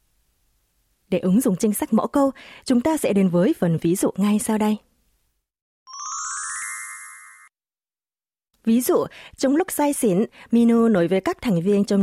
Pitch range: 180-230 Hz